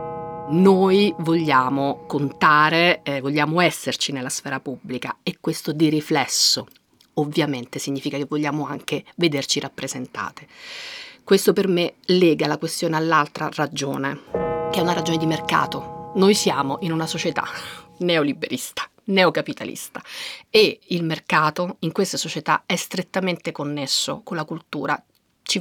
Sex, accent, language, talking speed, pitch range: female, native, Italian, 125 wpm, 145-180 Hz